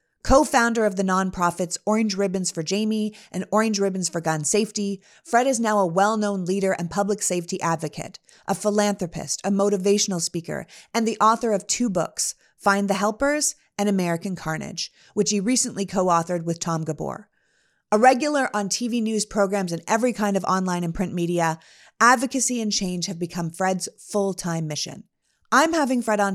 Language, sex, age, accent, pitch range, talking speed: English, female, 30-49, American, 175-215 Hz, 180 wpm